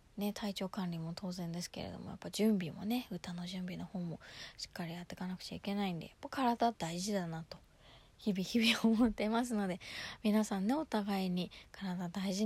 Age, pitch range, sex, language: 20-39, 175-225 Hz, female, Japanese